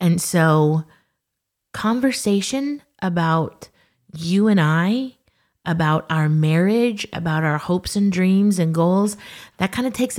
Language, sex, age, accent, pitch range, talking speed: English, female, 30-49, American, 165-225 Hz, 125 wpm